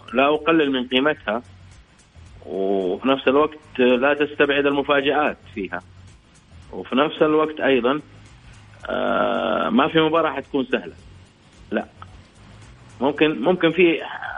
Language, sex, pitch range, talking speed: Arabic, male, 110-145 Hz, 100 wpm